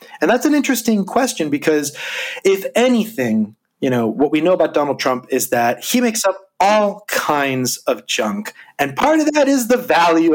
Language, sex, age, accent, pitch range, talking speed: English, male, 30-49, American, 120-180 Hz, 185 wpm